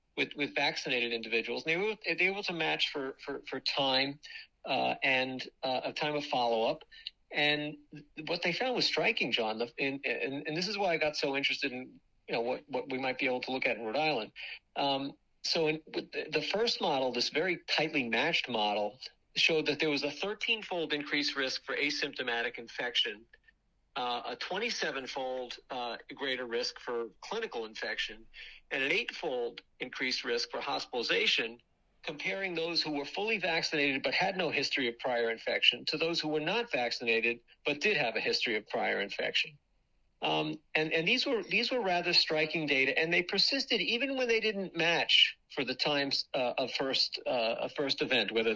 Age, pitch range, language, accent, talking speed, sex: 50-69, 130-190 Hz, English, American, 180 wpm, male